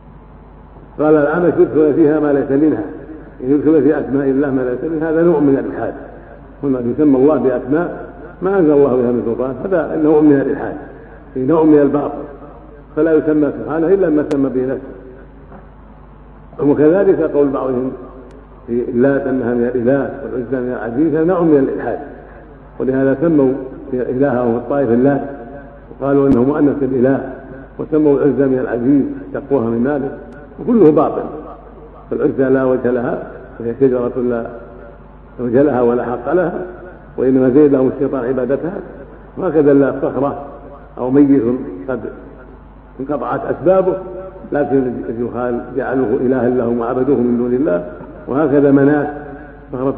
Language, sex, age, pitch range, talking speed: Arabic, male, 50-69, 125-145 Hz, 135 wpm